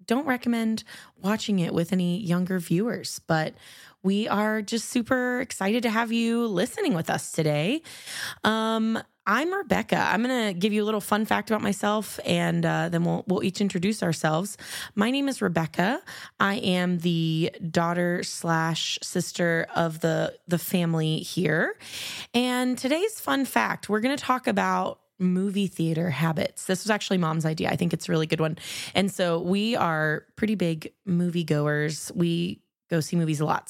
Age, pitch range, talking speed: 20-39, 160-210 Hz, 170 wpm